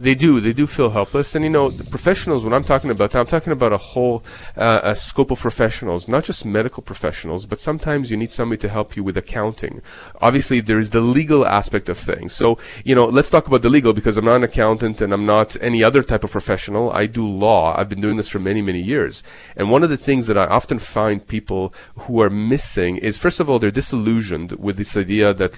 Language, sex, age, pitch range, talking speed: English, male, 30-49, 105-125 Hz, 240 wpm